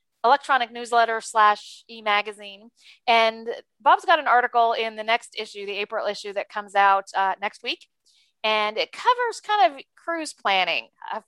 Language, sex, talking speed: English, female, 160 wpm